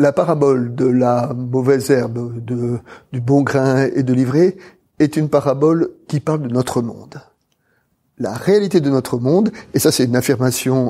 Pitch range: 130-155 Hz